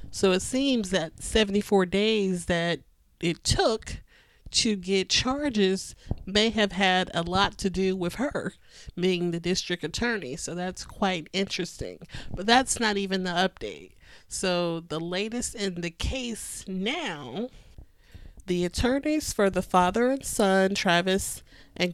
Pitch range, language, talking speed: 170-205 Hz, English, 140 wpm